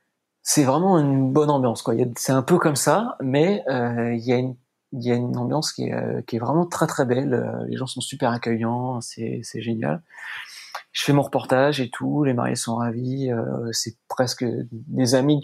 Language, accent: French, French